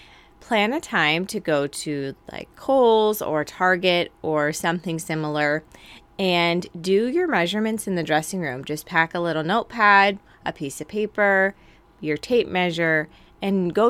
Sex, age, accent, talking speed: female, 20-39, American, 150 wpm